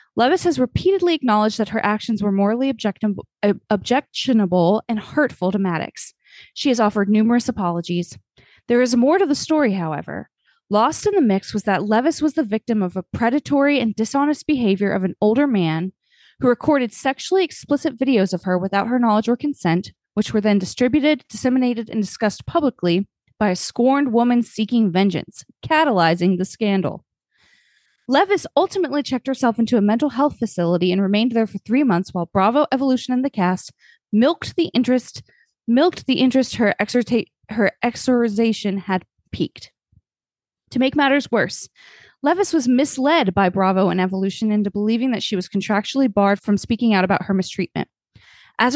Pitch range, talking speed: 195-270 Hz, 160 wpm